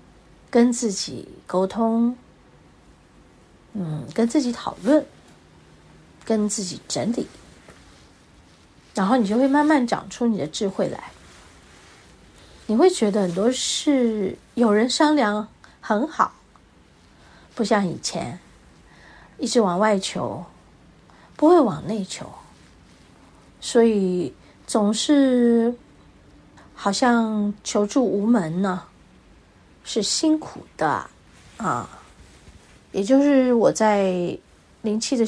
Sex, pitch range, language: female, 175-240 Hz, Chinese